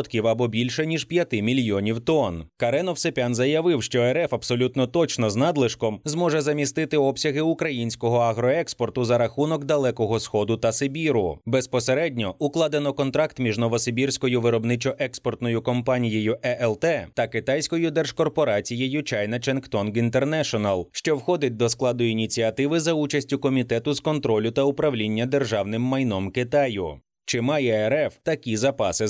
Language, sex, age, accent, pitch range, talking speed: Ukrainian, male, 30-49, native, 115-150 Hz, 125 wpm